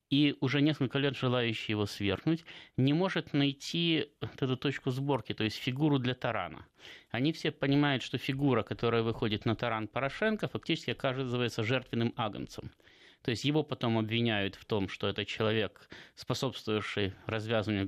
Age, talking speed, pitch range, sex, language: 20-39, 150 wpm, 115-155 Hz, male, Russian